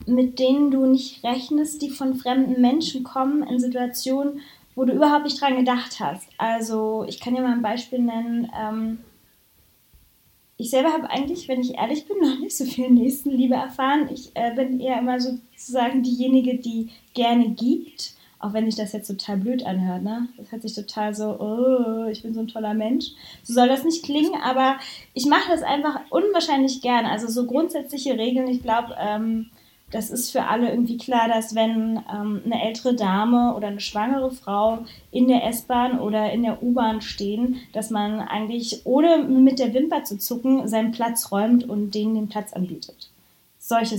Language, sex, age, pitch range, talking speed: German, female, 20-39, 225-265 Hz, 185 wpm